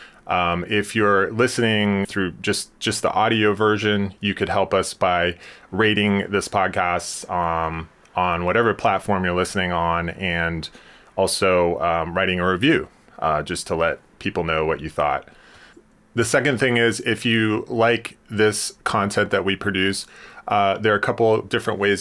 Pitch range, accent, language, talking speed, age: 90-110 Hz, American, English, 165 wpm, 30-49